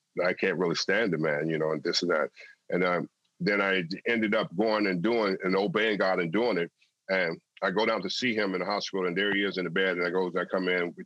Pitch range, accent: 85-105 Hz, American